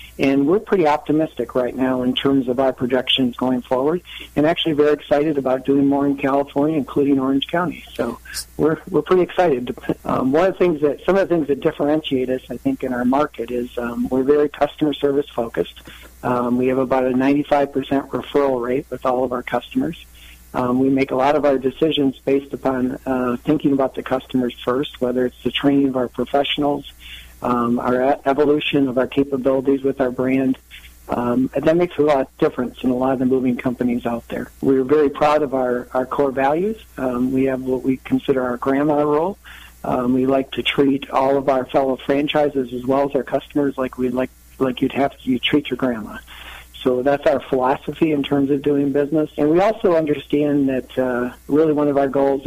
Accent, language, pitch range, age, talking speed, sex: American, English, 125-145 Hz, 50-69, 200 wpm, male